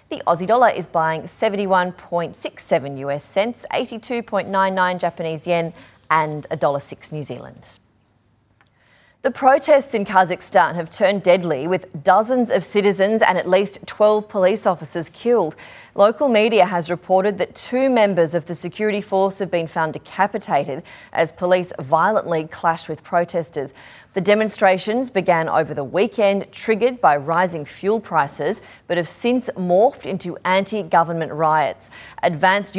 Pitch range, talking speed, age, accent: 160-200 Hz, 135 wpm, 30-49, Australian